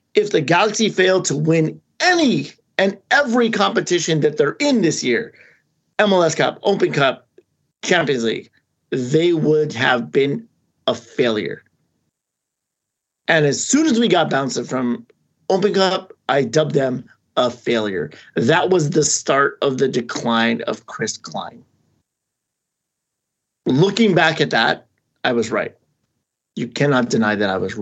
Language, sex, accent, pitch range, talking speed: English, male, American, 130-200 Hz, 140 wpm